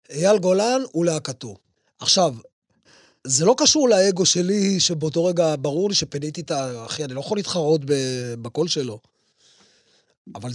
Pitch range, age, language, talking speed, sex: 155-215 Hz, 30-49, Hebrew, 130 wpm, male